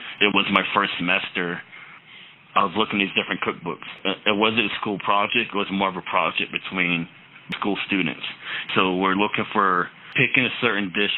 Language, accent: English, American